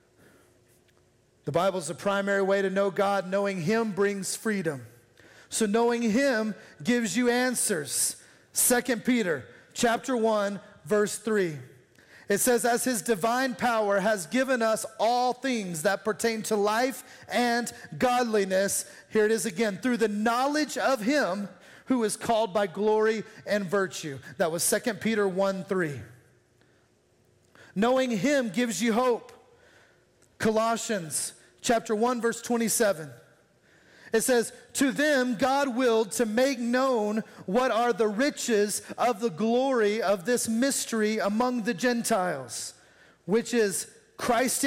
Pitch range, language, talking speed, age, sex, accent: 195-245 Hz, English, 135 wpm, 30-49, male, American